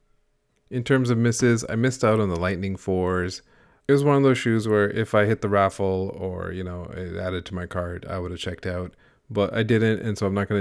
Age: 30-49